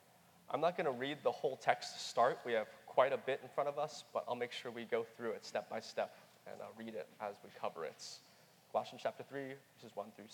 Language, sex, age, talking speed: English, male, 20-39, 255 wpm